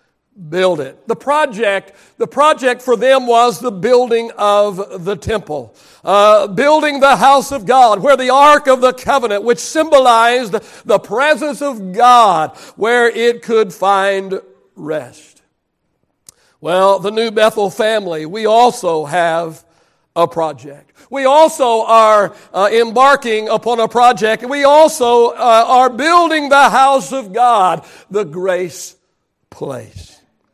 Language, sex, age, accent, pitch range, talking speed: English, male, 60-79, American, 215-275 Hz, 130 wpm